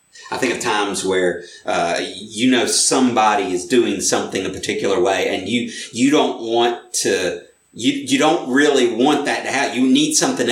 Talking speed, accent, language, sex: 185 wpm, American, English, male